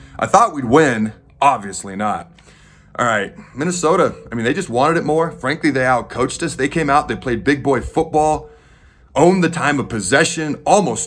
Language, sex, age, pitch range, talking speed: English, male, 30-49, 115-150 Hz, 190 wpm